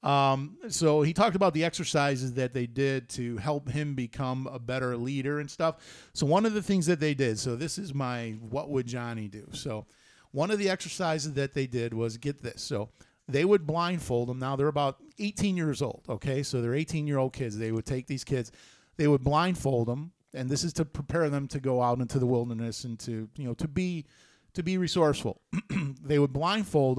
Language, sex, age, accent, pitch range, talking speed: English, male, 40-59, American, 125-160 Hz, 215 wpm